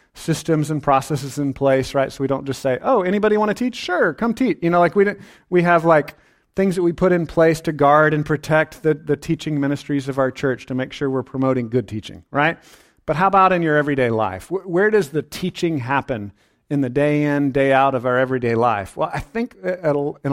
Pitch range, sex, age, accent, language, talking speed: 135-165 Hz, male, 40-59, American, English, 230 wpm